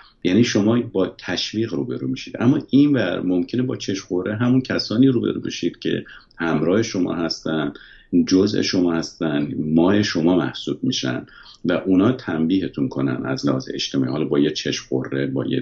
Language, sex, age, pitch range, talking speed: Persian, male, 50-69, 85-115 Hz, 155 wpm